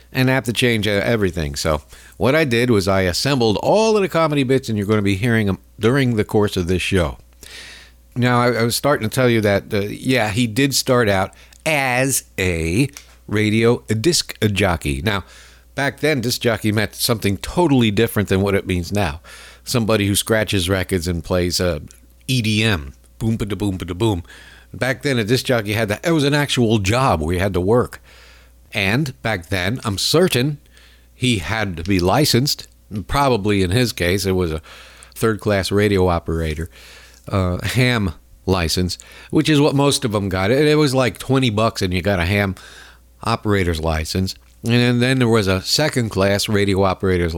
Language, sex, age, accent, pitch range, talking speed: English, male, 50-69, American, 95-125 Hz, 185 wpm